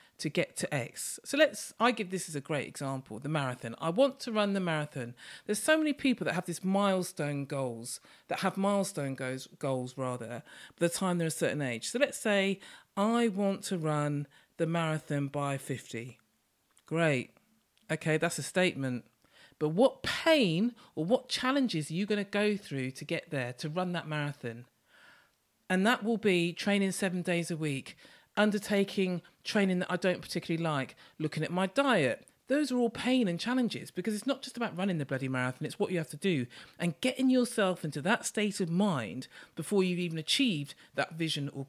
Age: 40-59